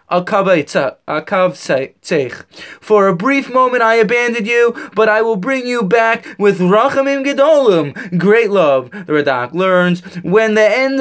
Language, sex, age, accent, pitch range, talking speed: English, male, 20-39, American, 175-235 Hz, 130 wpm